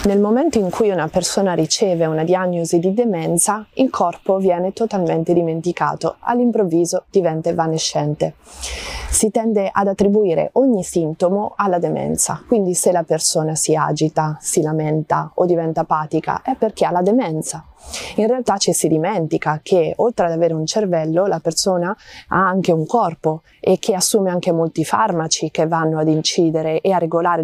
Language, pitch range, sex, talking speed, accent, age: Italian, 160-195 Hz, female, 160 wpm, native, 30-49